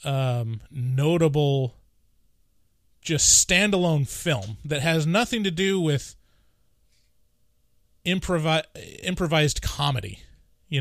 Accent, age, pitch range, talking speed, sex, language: American, 20-39, 135-165 Hz, 85 wpm, male, English